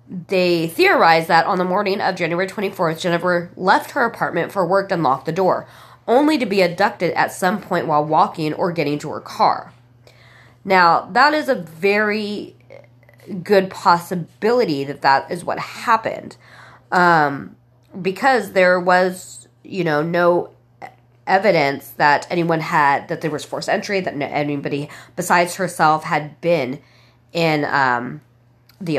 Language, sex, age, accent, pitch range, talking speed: English, female, 20-39, American, 150-190 Hz, 145 wpm